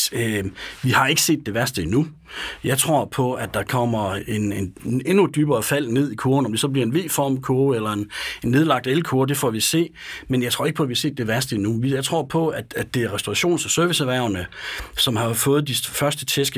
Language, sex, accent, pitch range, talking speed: Danish, male, native, 115-145 Hz, 240 wpm